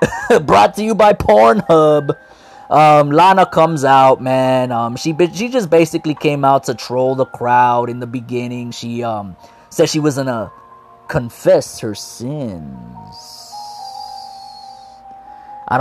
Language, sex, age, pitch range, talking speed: English, male, 20-39, 125-185 Hz, 135 wpm